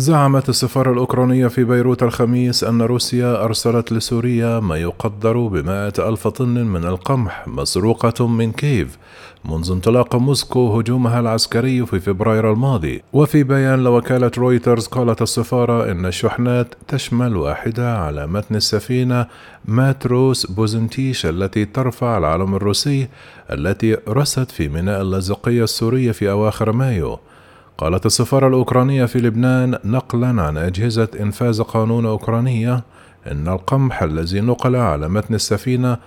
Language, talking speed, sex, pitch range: Arabic, 125 wpm, male, 105-125 Hz